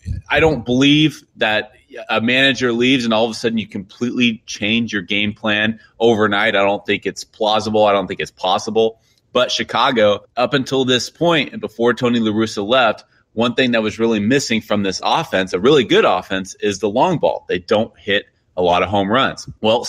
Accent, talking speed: American, 200 wpm